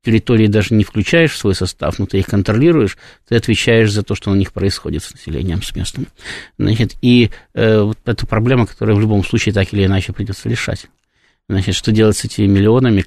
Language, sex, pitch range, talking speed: Russian, male, 100-130 Hz, 200 wpm